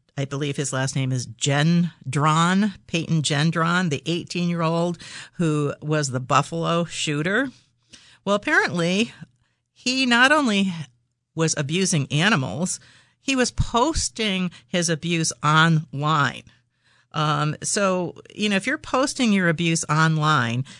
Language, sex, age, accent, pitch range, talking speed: English, female, 50-69, American, 140-180 Hz, 115 wpm